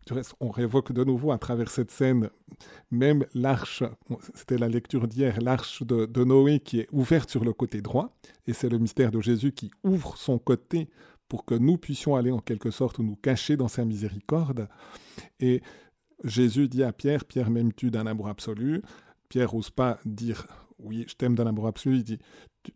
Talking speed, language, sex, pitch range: 185 wpm, French, male, 115-135 Hz